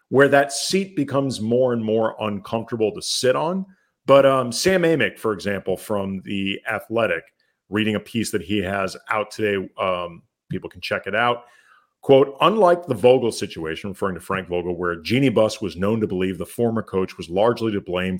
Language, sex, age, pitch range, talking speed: English, male, 40-59, 100-130 Hz, 190 wpm